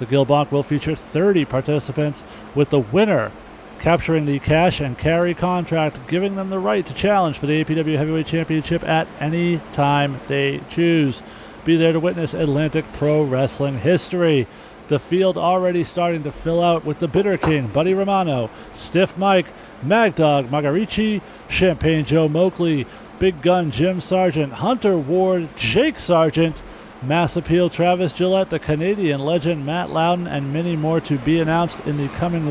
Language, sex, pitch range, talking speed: English, male, 145-175 Hz, 155 wpm